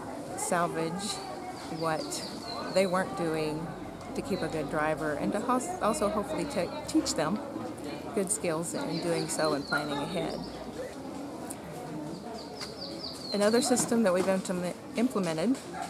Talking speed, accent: 110 wpm, American